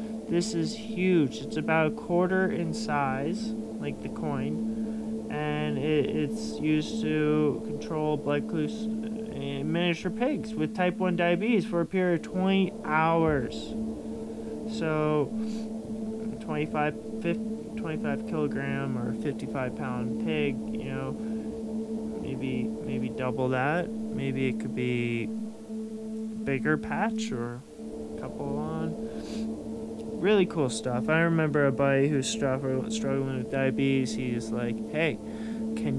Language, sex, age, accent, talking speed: English, male, 20-39, American, 120 wpm